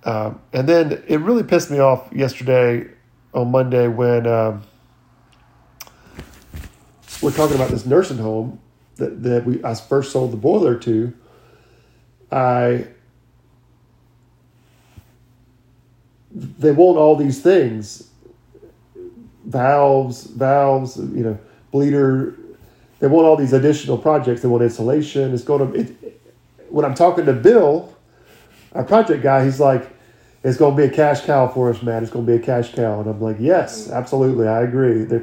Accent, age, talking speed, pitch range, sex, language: American, 40-59, 150 wpm, 120-140 Hz, male, English